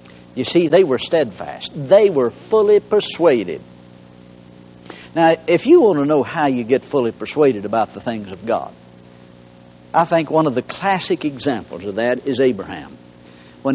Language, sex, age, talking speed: English, male, 60-79, 160 wpm